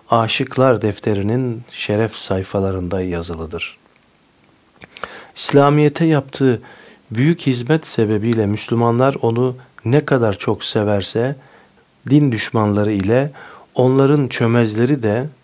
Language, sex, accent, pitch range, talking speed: Turkish, male, native, 100-130 Hz, 85 wpm